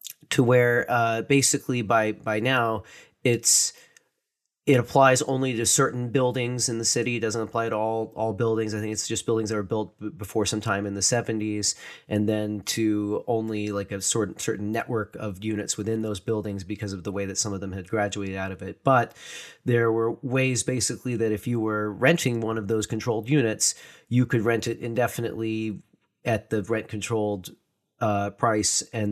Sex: male